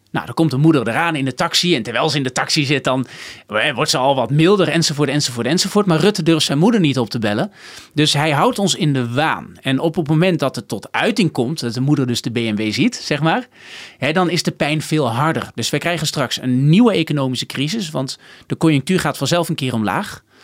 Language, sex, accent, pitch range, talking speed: Dutch, male, Dutch, 130-175 Hz, 240 wpm